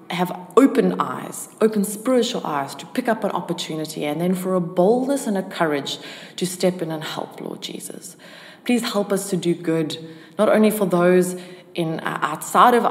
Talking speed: 185 wpm